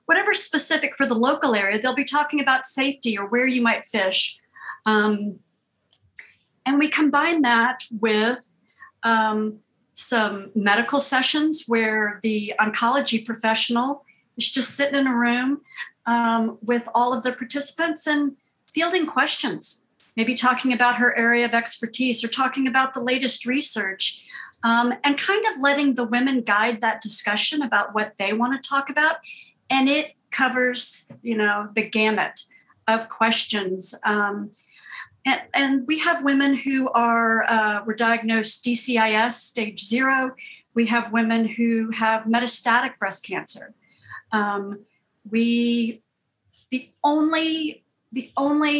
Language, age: English, 50-69